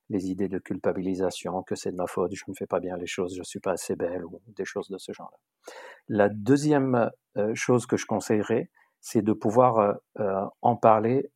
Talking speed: 205 wpm